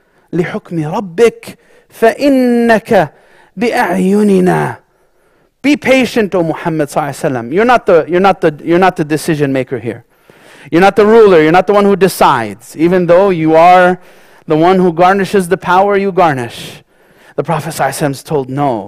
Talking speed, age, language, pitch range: 155 wpm, 30-49, English, 155-220 Hz